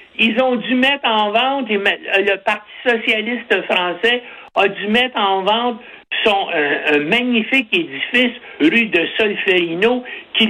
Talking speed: 125 wpm